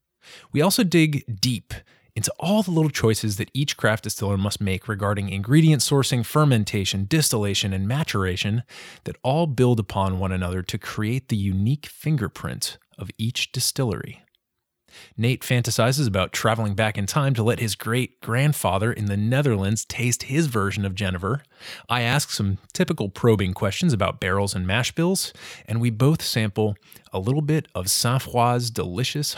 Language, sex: English, male